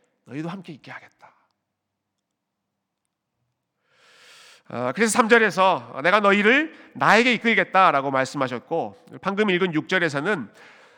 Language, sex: Korean, male